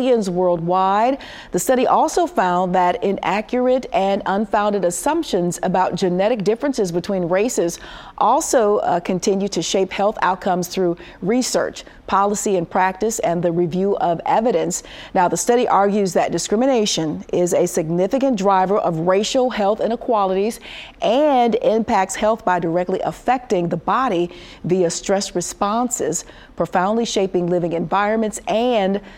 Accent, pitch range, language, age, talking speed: American, 180-230 Hz, English, 40-59, 130 wpm